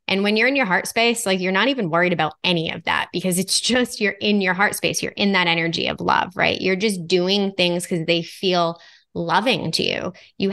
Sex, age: female, 20-39